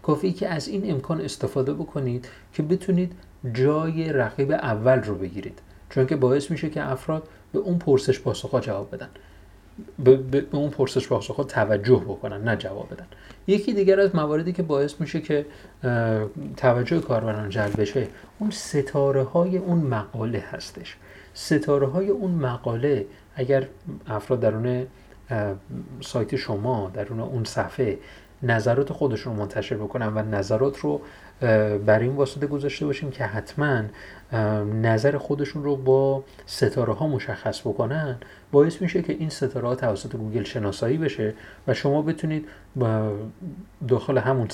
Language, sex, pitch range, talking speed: Persian, male, 110-145 Hz, 140 wpm